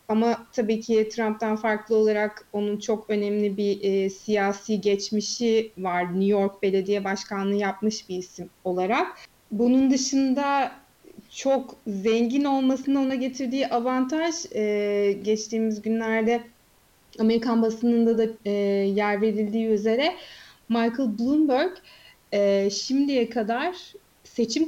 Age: 30-49